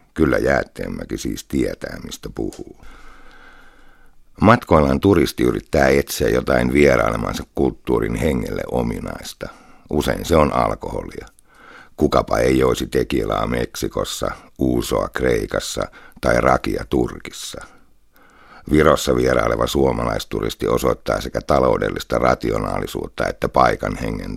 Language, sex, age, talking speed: Finnish, male, 60-79, 95 wpm